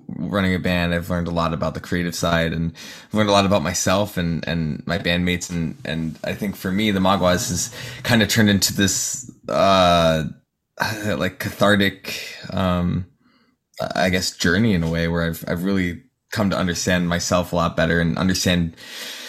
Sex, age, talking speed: male, 20-39, 180 wpm